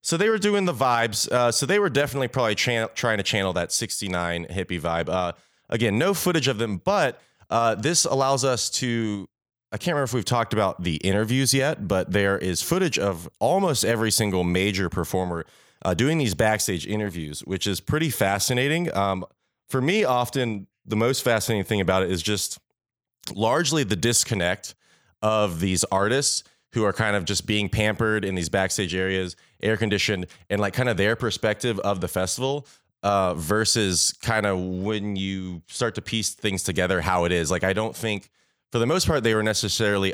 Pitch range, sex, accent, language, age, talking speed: 95-115 Hz, male, American, English, 30-49, 185 wpm